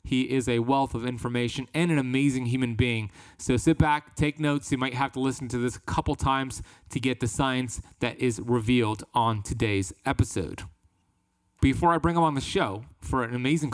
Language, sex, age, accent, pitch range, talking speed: English, male, 30-49, American, 115-140 Hz, 200 wpm